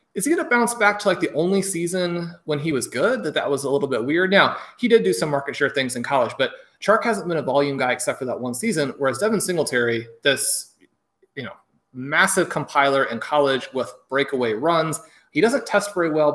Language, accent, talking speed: English, American, 230 wpm